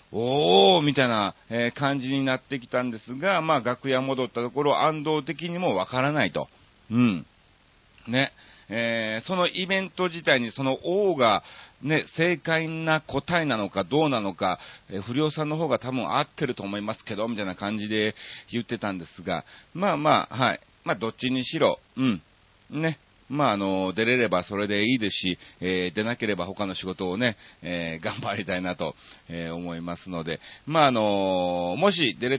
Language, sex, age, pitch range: Japanese, male, 40-59, 95-150 Hz